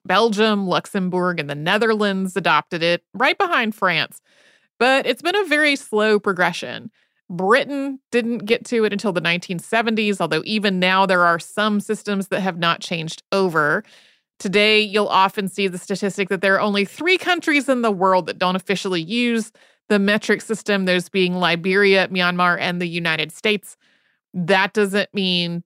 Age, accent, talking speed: 30-49, American, 165 wpm